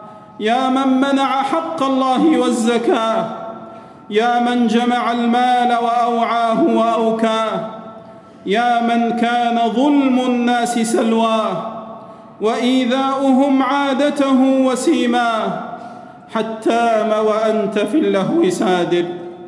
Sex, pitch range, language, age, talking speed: male, 205-265 Hz, Arabic, 40-59, 65 wpm